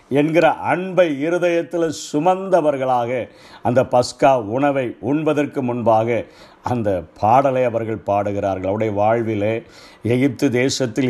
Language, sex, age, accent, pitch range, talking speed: Tamil, male, 50-69, native, 130-170 Hz, 90 wpm